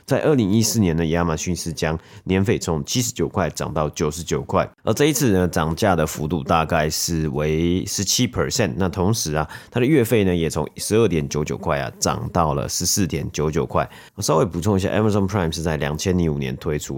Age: 30-49